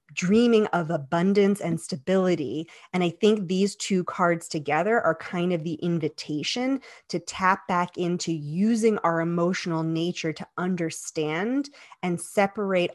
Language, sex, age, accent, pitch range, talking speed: English, female, 30-49, American, 165-200 Hz, 135 wpm